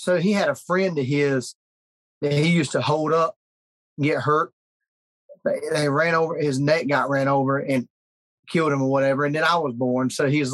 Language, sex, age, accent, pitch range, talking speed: English, male, 30-49, American, 140-165 Hz, 200 wpm